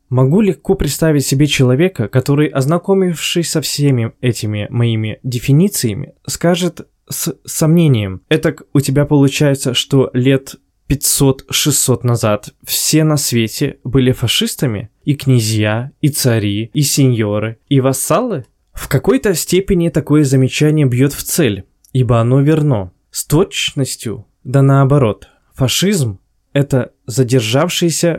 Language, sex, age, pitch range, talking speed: Russian, male, 20-39, 120-150 Hz, 115 wpm